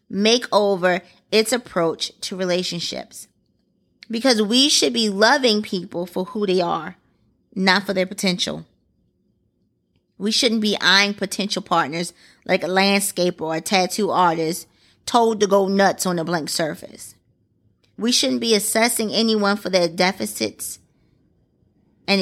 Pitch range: 175-215 Hz